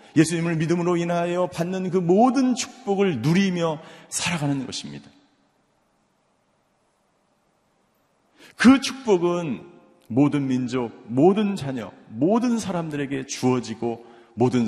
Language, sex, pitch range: Korean, male, 105-160 Hz